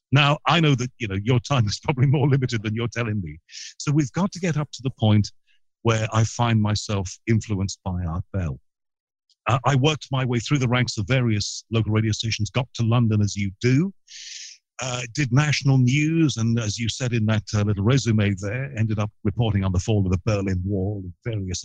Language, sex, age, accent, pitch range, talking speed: English, male, 50-69, British, 100-130 Hz, 215 wpm